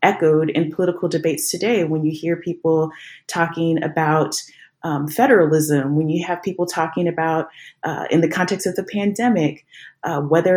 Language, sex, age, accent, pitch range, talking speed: English, female, 30-49, American, 155-175 Hz, 160 wpm